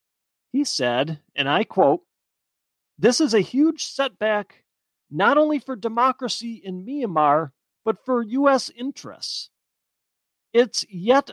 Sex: male